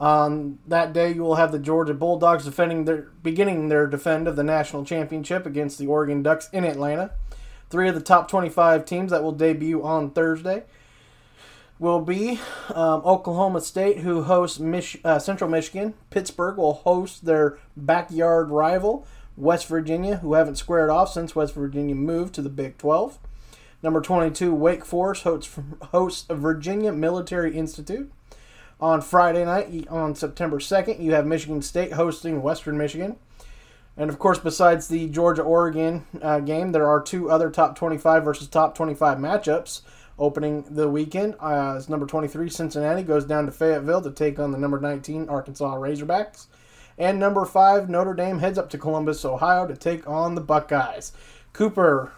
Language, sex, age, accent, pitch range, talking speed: English, male, 30-49, American, 150-175 Hz, 160 wpm